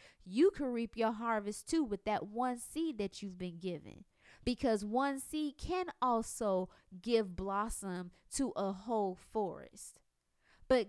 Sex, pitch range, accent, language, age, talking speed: female, 210-270 Hz, American, English, 20-39, 145 wpm